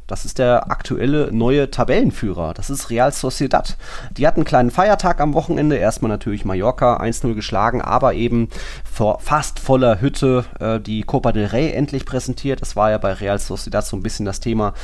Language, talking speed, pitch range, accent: German, 180 wpm, 105-125 Hz, German